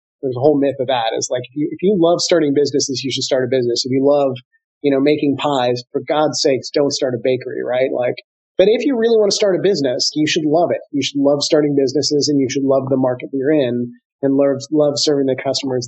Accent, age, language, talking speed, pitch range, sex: American, 30-49, English, 260 wpm, 130-150 Hz, male